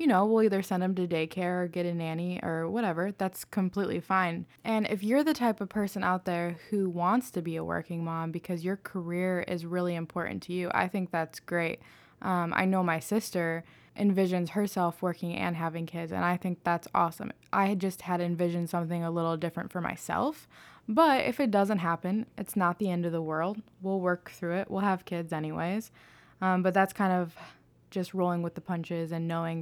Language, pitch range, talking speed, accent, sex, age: English, 170-195 Hz, 210 wpm, American, female, 20-39